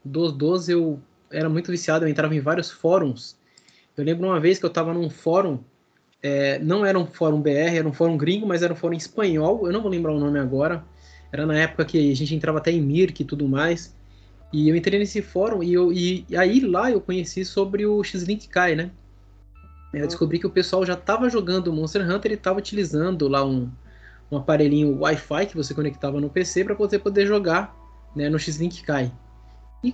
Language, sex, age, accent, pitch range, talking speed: Portuguese, male, 20-39, Brazilian, 145-185 Hz, 210 wpm